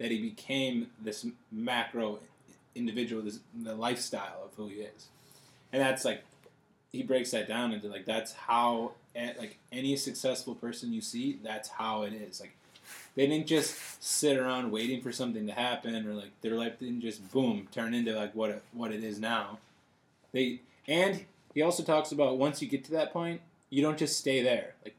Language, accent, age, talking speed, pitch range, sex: English, American, 20-39, 190 wpm, 115-140 Hz, male